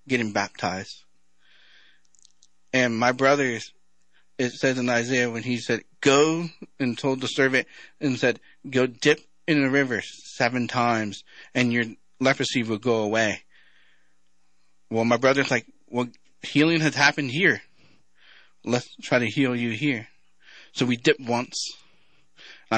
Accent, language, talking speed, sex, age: American, English, 135 wpm, male, 30-49